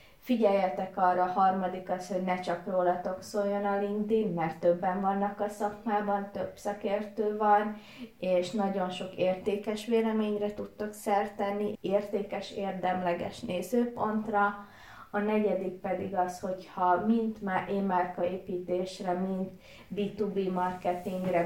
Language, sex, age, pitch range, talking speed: Hungarian, female, 20-39, 180-205 Hz, 115 wpm